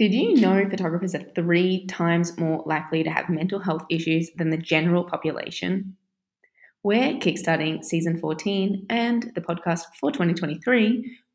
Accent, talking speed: Australian, 145 wpm